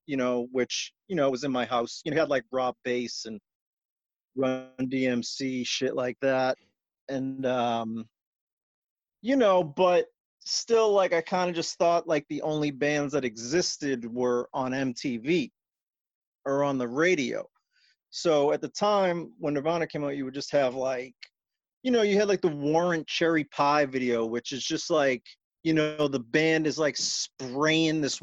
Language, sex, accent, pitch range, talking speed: English, male, American, 130-175 Hz, 175 wpm